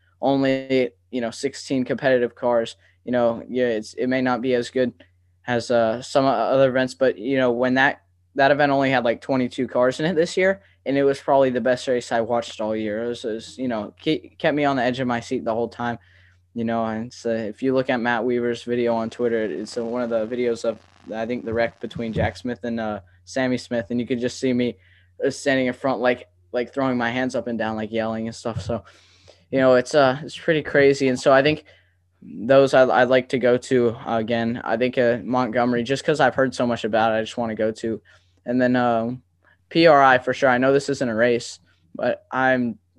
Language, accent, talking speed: English, American, 235 wpm